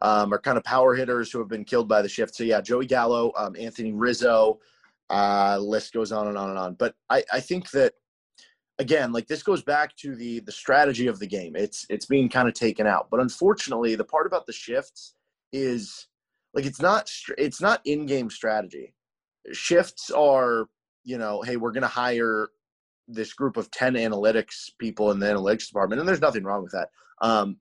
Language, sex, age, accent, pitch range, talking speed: English, male, 20-39, American, 105-130 Hz, 200 wpm